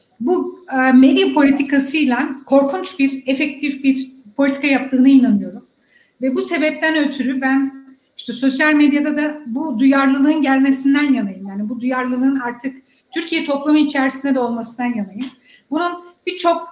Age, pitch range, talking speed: 60-79, 255-290 Hz, 125 wpm